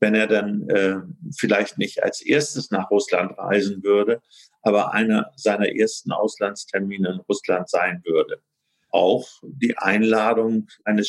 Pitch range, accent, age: 100-120 Hz, German, 50-69